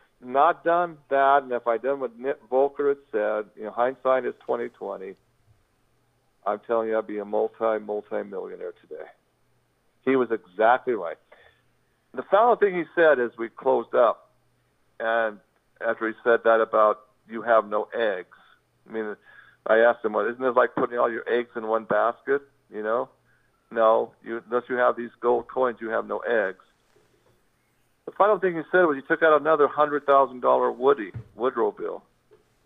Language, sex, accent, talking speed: English, male, American, 170 wpm